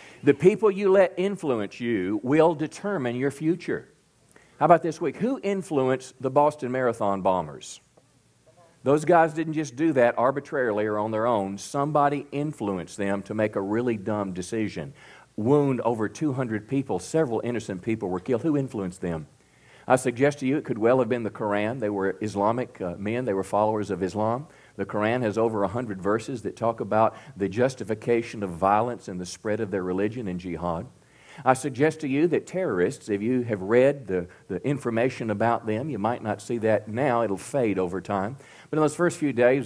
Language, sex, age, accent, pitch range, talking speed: English, male, 50-69, American, 105-140 Hz, 190 wpm